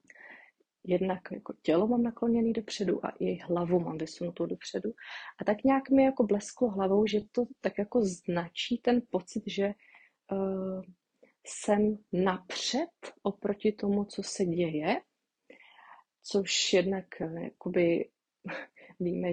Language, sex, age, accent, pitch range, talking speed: Czech, female, 30-49, native, 170-200 Hz, 120 wpm